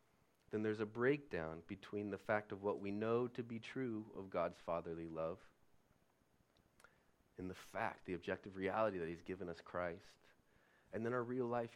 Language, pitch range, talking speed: English, 95-120 Hz, 175 wpm